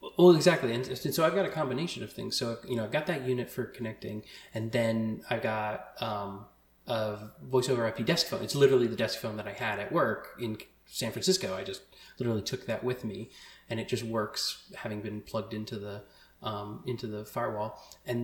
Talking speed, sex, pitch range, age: 205 wpm, male, 105-125 Hz, 20-39